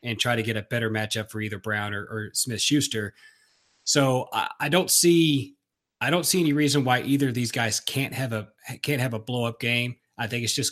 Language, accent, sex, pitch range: English, American, male, 110-135 Hz